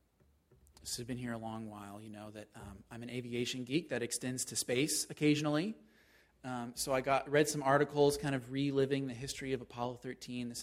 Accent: American